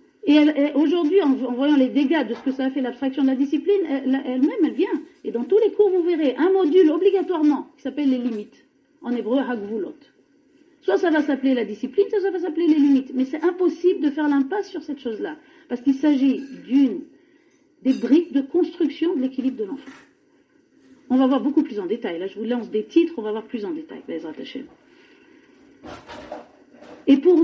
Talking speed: 195 wpm